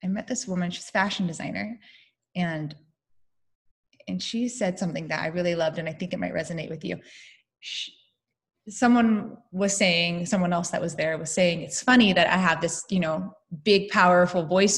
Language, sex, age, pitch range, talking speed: English, female, 20-39, 175-230 Hz, 190 wpm